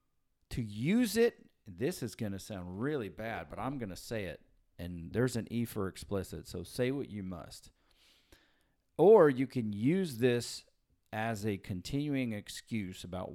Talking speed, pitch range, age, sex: 165 wpm, 95-145 Hz, 40-59, male